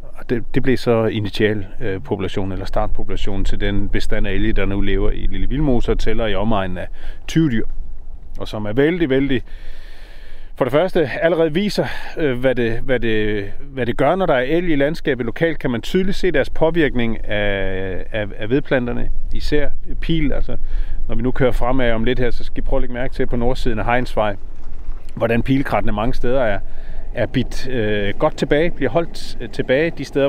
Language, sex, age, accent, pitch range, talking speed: Danish, male, 30-49, native, 105-135 Hz, 195 wpm